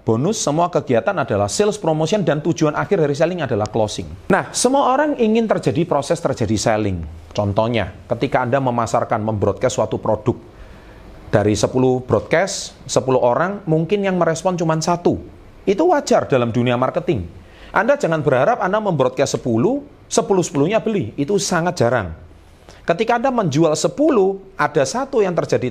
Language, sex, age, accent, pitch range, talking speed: Indonesian, male, 40-59, native, 110-180 Hz, 145 wpm